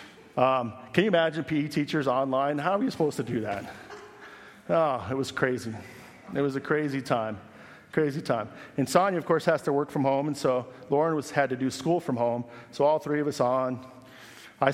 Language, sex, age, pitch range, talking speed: English, male, 40-59, 120-150 Hz, 210 wpm